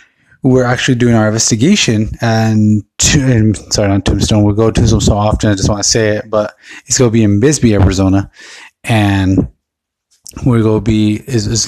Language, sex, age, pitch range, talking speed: English, male, 20-39, 100-115 Hz, 185 wpm